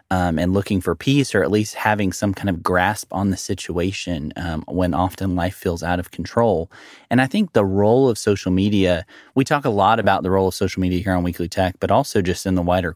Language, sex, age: English, male, 30-49